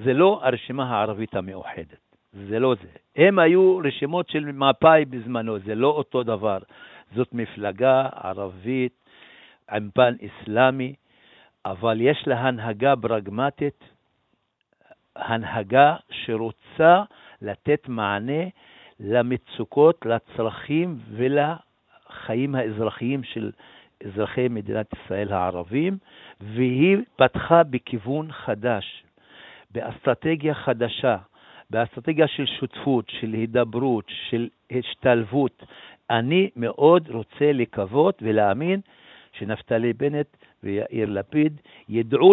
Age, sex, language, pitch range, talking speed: 60-79, male, Hebrew, 110-145 Hz, 90 wpm